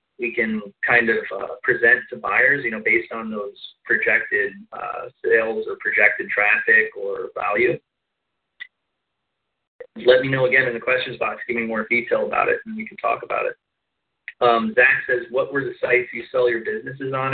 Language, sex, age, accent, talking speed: English, male, 30-49, American, 185 wpm